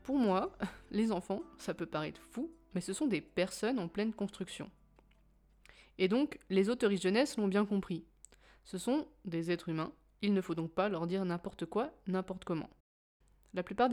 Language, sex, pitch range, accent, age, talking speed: French, female, 180-225 Hz, French, 20-39, 180 wpm